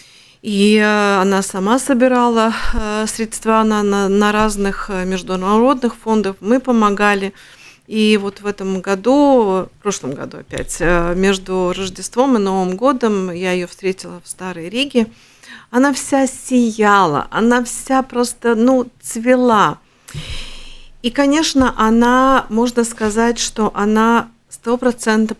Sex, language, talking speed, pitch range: female, Russian, 115 wpm, 190-245 Hz